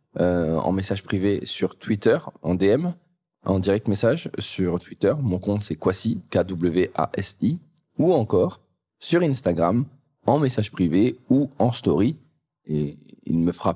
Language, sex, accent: French, male, French